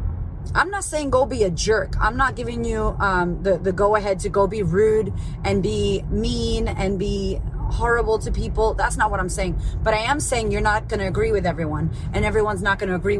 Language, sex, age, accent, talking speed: English, female, 30-49, American, 225 wpm